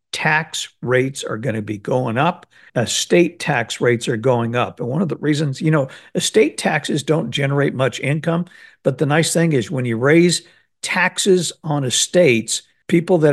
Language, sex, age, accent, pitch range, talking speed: English, male, 60-79, American, 130-165 Hz, 180 wpm